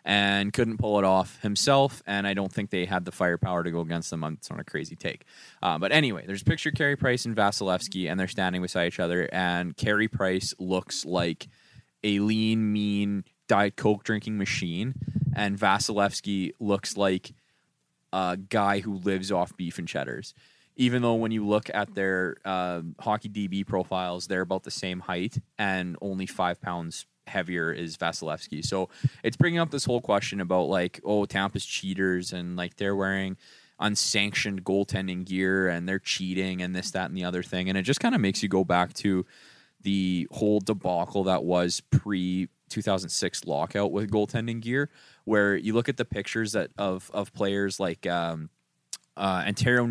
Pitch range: 90-105 Hz